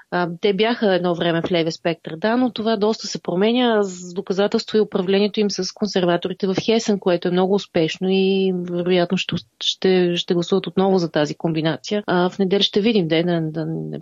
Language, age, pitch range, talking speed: Bulgarian, 30-49, 175-210 Hz, 185 wpm